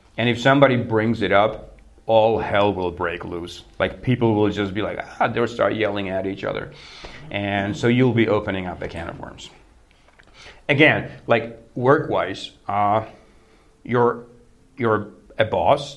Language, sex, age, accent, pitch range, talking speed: Czech, male, 40-59, American, 100-125 Hz, 160 wpm